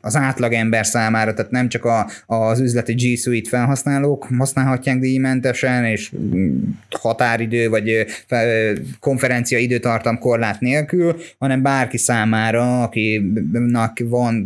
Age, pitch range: 20-39, 115-130 Hz